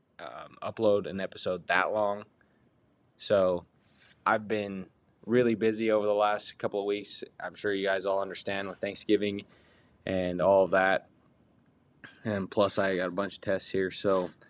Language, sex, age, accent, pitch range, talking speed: English, male, 20-39, American, 90-100 Hz, 160 wpm